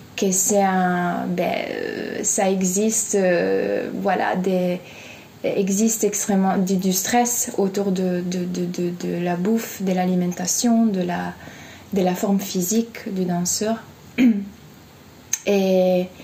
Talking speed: 120 wpm